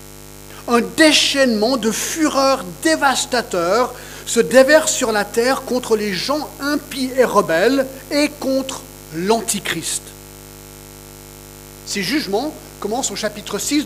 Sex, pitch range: male, 175-275 Hz